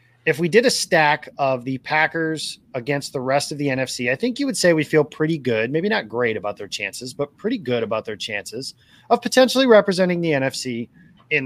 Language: English